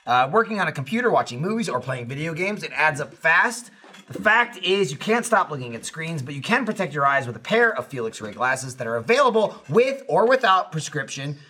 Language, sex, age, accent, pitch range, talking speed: English, male, 30-49, American, 140-205 Hz, 230 wpm